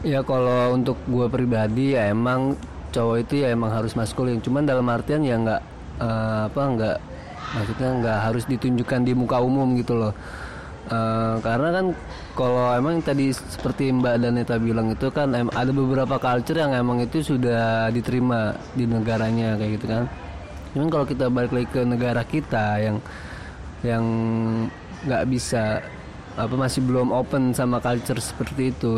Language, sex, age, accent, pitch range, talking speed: Indonesian, male, 20-39, native, 115-135 Hz, 155 wpm